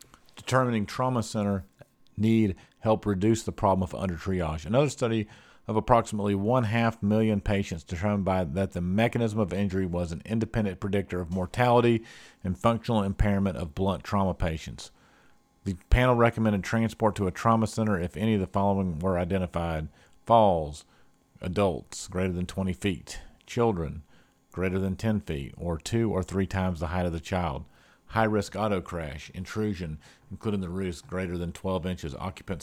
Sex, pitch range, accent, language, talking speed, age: male, 90-110 Hz, American, English, 160 wpm, 50-69